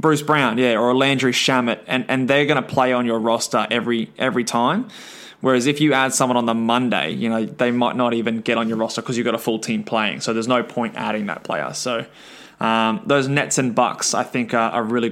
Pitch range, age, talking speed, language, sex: 125-150 Hz, 20-39, 240 wpm, English, male